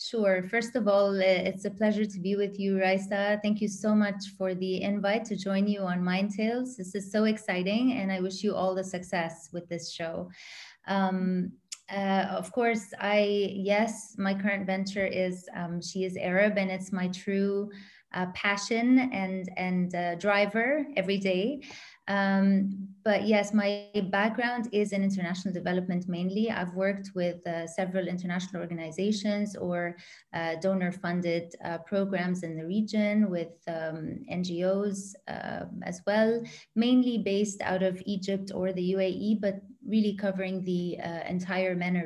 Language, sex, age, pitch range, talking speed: English, female, 20-39, 180-205 Hz, 160 wpm